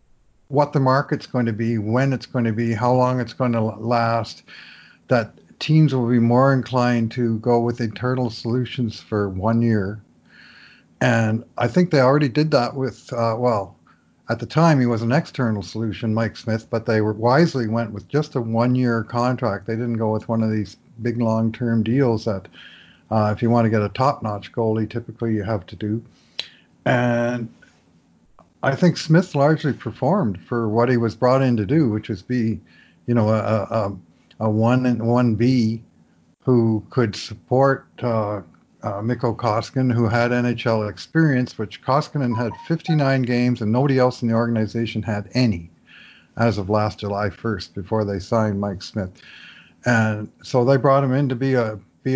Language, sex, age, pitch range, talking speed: English, male, 50-69, 110-125 Hz, 180 wpm